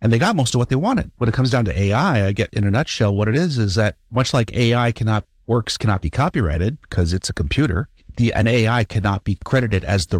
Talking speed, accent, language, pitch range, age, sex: 260 wpm, American, English, 85-115 Hz, 50-69, male